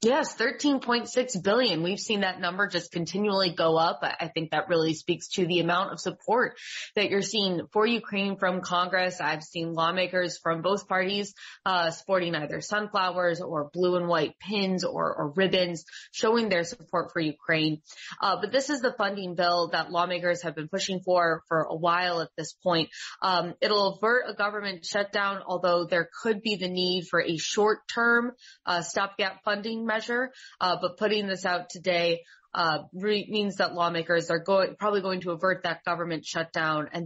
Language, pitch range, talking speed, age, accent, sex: English, 165-200 Hz, 175 wpm, 20-39, American, female